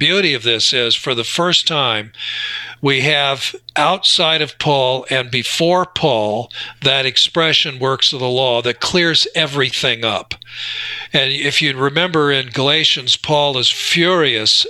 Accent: American